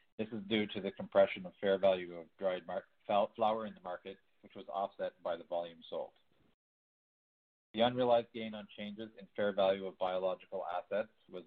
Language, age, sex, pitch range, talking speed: English, 40-59, male, 95-110 Hz, 185 wpm